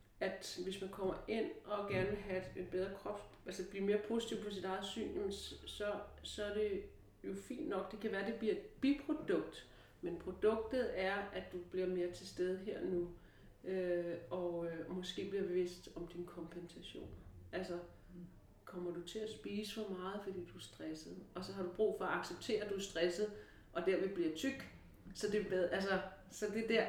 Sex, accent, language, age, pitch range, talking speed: female, native, Danish, 40-59, 175-210 Hz, 200 wpm